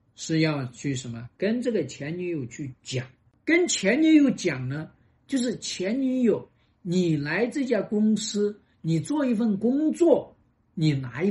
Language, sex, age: Chinese, male, 50-69